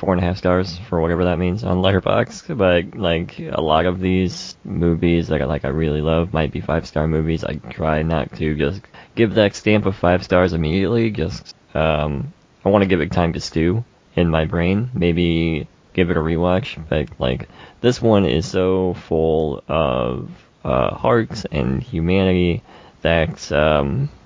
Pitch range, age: 80-95 Hz, 20-39